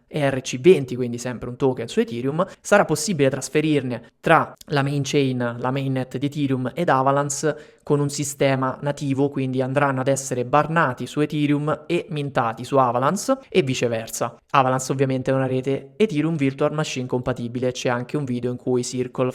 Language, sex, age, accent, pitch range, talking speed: Italian, male, 20-39, native, 130-150 Hz, 165 wpm